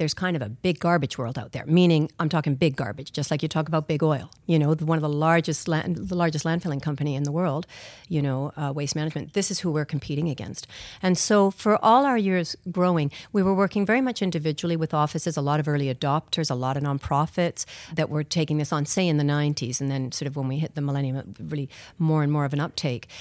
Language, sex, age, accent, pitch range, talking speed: English, female, 50-69, American, 145-180 Hz, 245 wpm